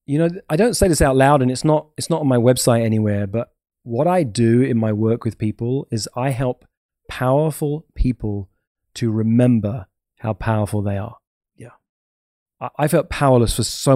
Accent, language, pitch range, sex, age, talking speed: British, English, 110-130 Hz, male, 20-39, 190 wpm